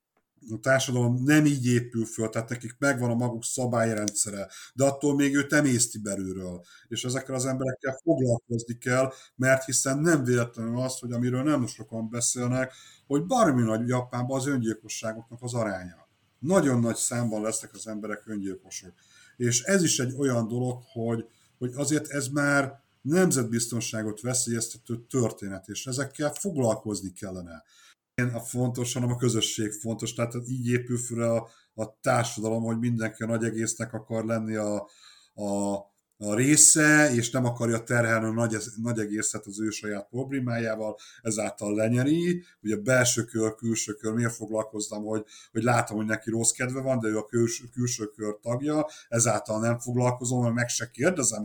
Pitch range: 110-130 Hz